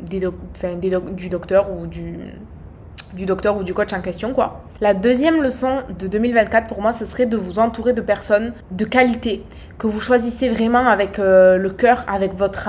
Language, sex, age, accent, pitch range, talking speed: French, female, 20-39, French, 195-245 Hz, 195 wpm